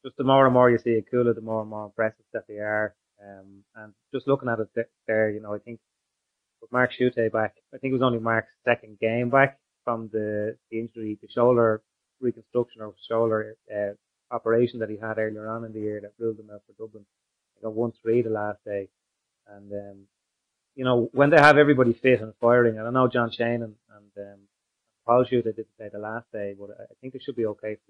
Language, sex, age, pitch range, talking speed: English, male, 20-39, 105-120 Hz, 230 wpm